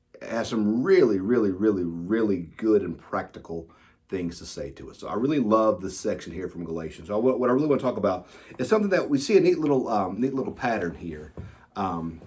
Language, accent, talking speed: English, American, 220 wpm